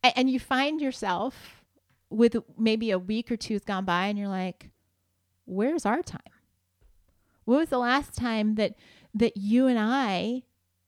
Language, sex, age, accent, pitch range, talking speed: English, female, 30-49, American, 195-260 Hz, 160 wpm